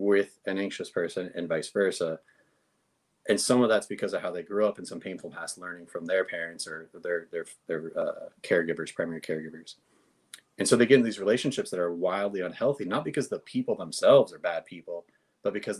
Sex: male